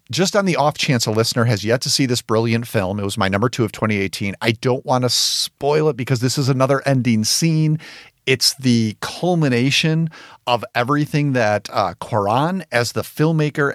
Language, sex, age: English, male, 50-69